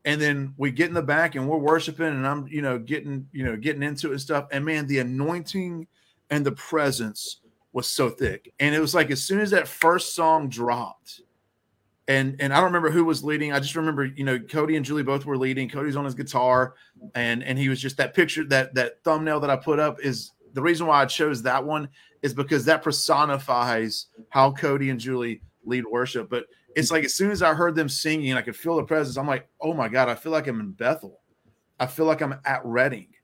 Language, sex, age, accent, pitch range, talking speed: English, male, 30-49, American, 125-155 Hz, 235 wpm